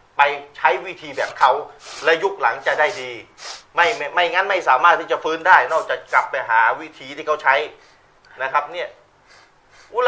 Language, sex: Thai, male